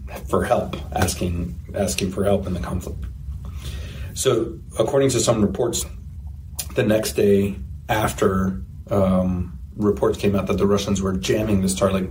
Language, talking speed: English, 145 wpm